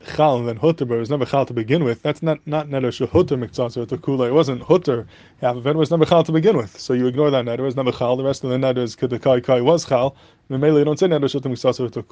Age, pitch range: 20-39, 125-150 Hz